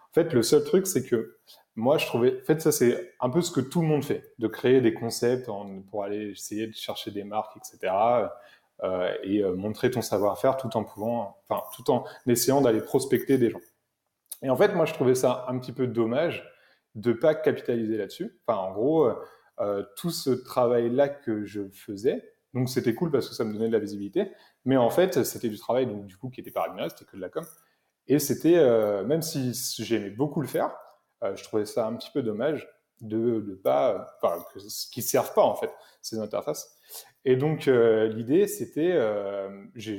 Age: 30-49